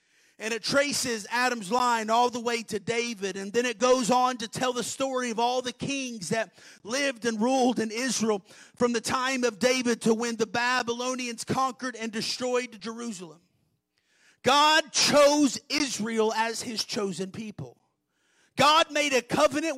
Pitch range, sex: 225-270 Hz, male